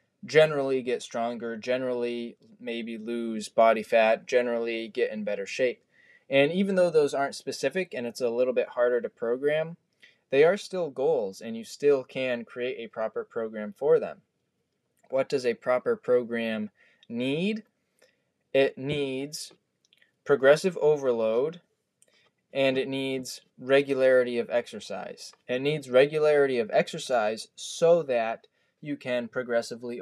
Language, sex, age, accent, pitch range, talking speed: English, male, 20-39, American, 120-145 Hz, 135 wpm